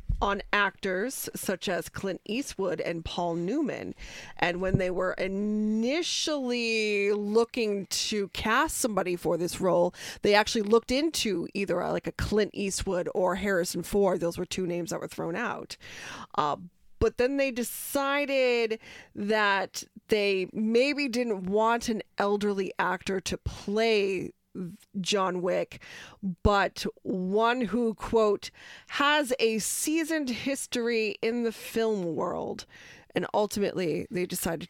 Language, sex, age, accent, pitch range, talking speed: English, female, 20-39, American, 185-230 Hz, 130 wpm